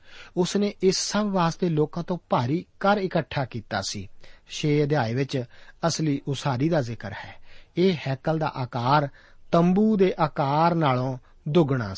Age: 50-69